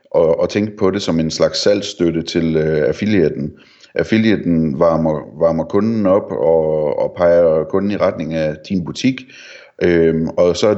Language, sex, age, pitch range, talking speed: Danish, male, 30-49, 80-100 Hz, 165 wpm